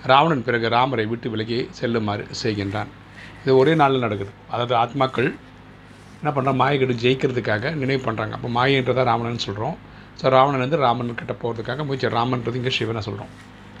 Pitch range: 110-130 Hz